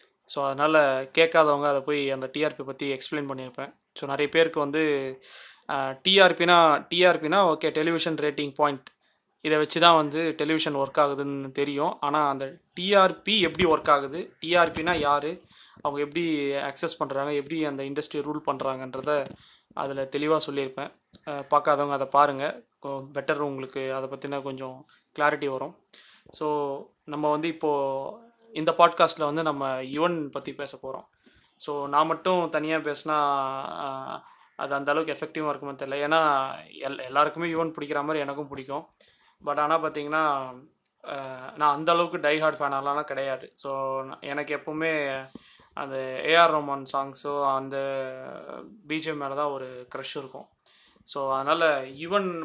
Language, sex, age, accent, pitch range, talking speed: Tamil, male, 20-39, native, 140-155 Hz, 130 wpm